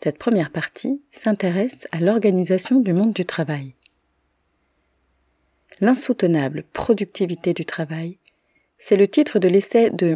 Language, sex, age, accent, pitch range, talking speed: French, female, 30-49, French, 155-195 Hz, 120 wpm